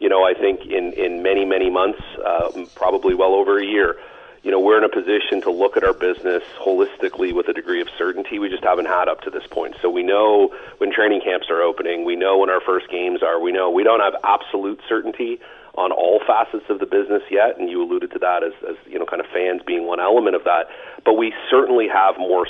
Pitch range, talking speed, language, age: 365-440 Hz, 245 wpm, English, 40-59